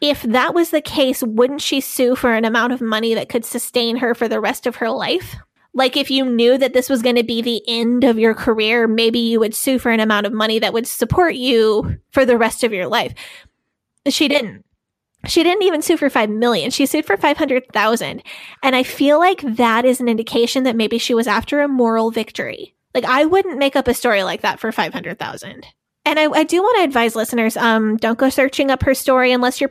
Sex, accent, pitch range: female, American, 230-275 Hz